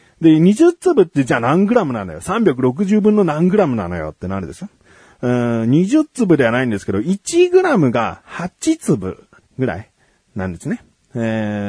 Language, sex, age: Japanese, male, 30-49